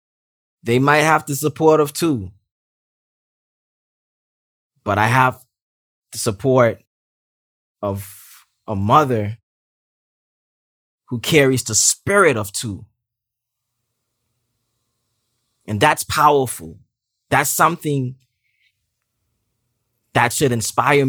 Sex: male